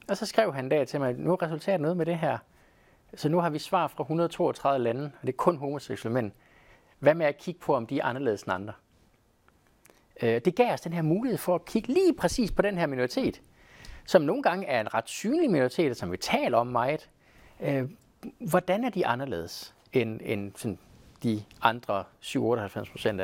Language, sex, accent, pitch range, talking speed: Danish, male, native, 115-175 Hz, 205 wpm